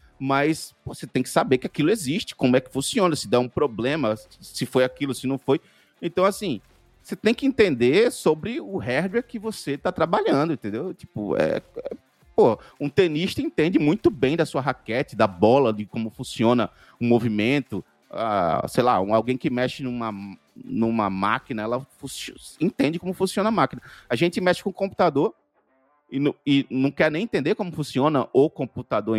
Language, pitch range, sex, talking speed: Portuguese, 125-175 Hz, male, 185 wpm